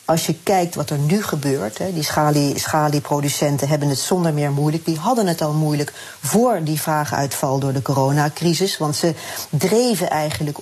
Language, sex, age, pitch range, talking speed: Dutch, female, 40-59, 145-165 Hz, 170 wpm